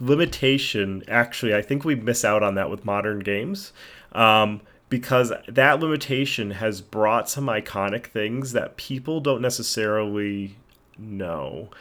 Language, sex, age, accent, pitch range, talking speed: English, male, 30-49, American, 100-120 Hz, 130 wpm